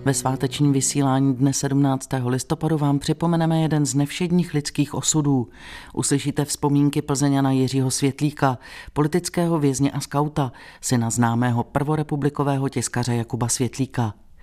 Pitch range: 125-150 Hz